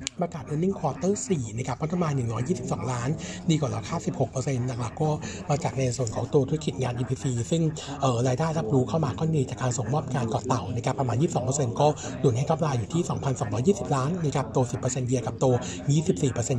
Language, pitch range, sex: Thai, 125-155 Hz, male